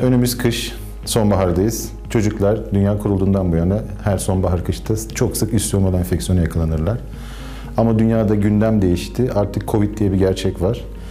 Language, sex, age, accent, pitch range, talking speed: Turkish, male, 50-69, native, 95-115 Hz, 145 wpm